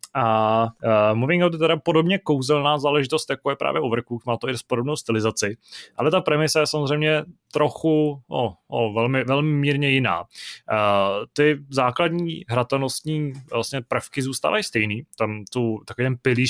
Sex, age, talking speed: male, 20-39, 150 wpm